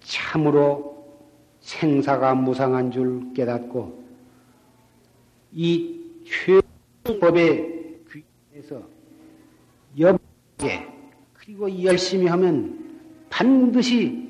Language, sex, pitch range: Korean, male, 125-180 Hz